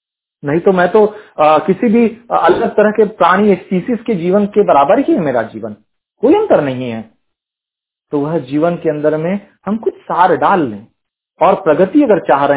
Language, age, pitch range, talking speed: Hindi, 40-59, 135-200 Hz, 195 wpm